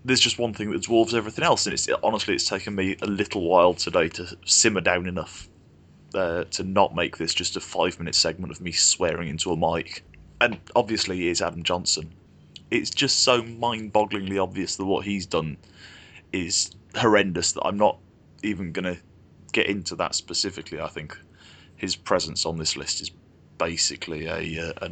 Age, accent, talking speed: 20-39, British, 180 wpm